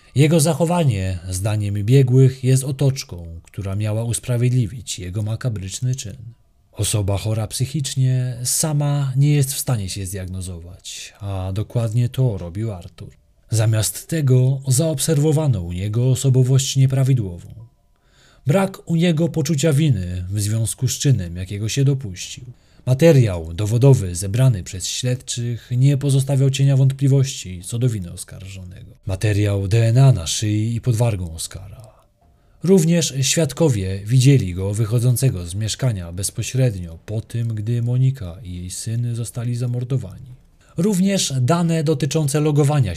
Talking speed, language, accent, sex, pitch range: 125 wpm, Polish, native, male, 100-135 Hz